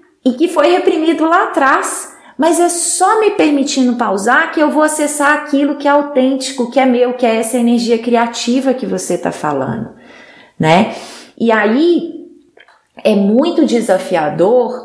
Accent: Brazilian